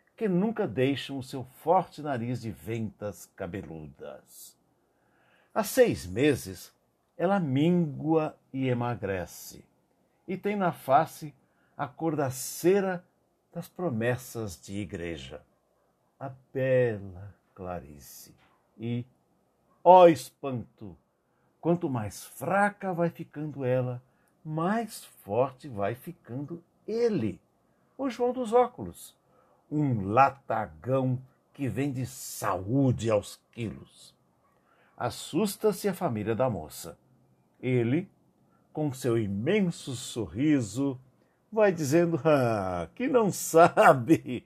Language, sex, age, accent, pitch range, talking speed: Portuguese, male, 60-79, Brazilian, 120-180 Hz, 100 wpm